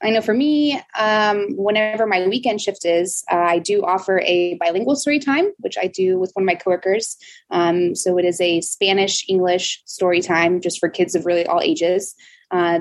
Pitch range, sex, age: 170-200 Hz, female, 20-39